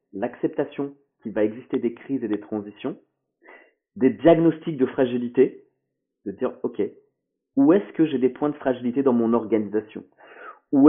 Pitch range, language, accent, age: 140-210 Hz, French, French, 40-59